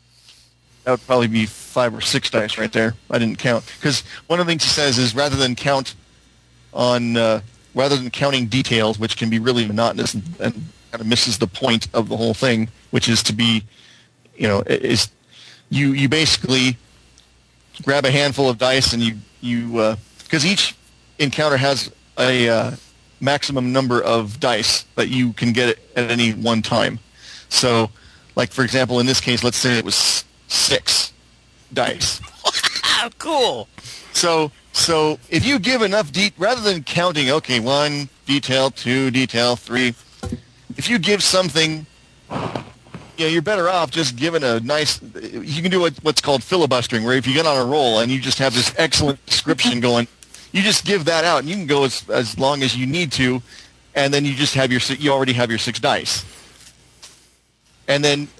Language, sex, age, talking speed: English, male, 40-59, 185 wpm